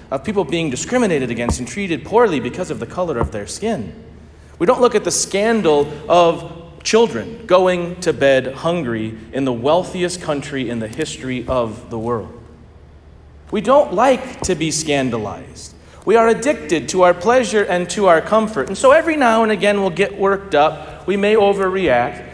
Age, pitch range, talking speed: 40-59, 145-220 Hz, 175 wpm